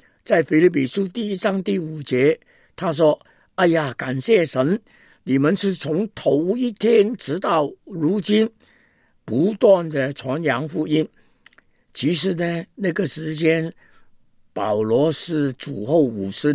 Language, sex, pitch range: Chinese, male, 135-190 Hz